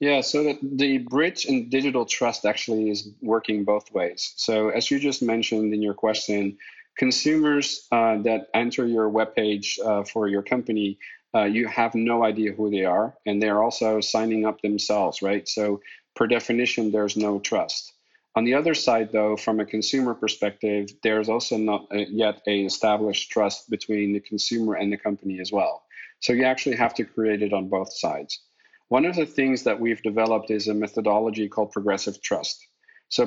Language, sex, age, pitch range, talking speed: English, male, 40-59, 105-120 Hz, 180 wpm